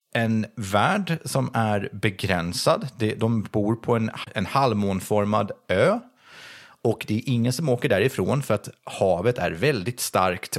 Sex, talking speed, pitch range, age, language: male, 135 wpm, 95-135 Hz, 30-49, Swedish